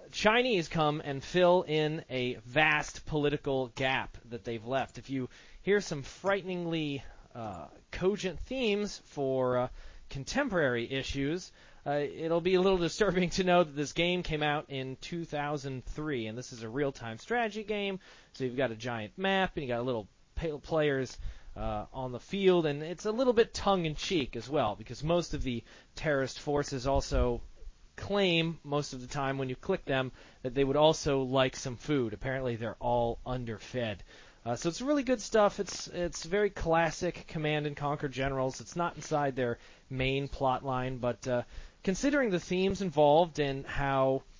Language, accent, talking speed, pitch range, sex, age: English, American, 170 wpm, 125-170 Hz, male, 30-49